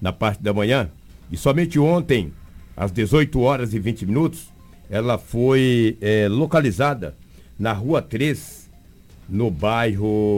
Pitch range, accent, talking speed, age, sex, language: 85-120 Hz, Brazilian, 125 wpm, 60-79, male, Portuguese